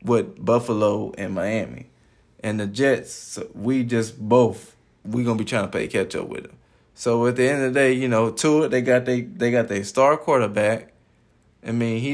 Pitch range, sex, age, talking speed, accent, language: 110-135 Hz, male, 20-39, 210 wpm, American, English